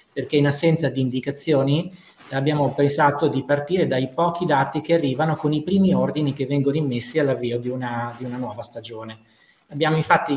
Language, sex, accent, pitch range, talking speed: Italian, male, native, 125-155 Hz, 170 wpm